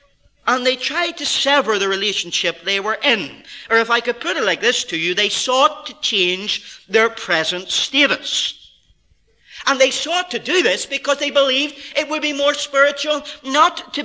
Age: 40-59